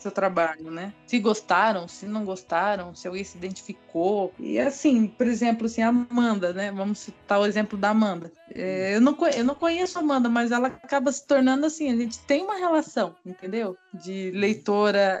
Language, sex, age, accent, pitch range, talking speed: Portuguese, female, 20-39, Brazilian, 185-235 Hz, 180 wpm